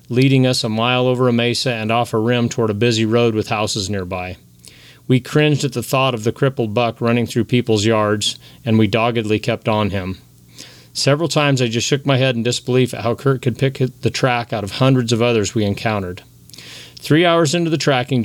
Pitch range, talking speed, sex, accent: 110-130 Hz, 215 wpm, male, American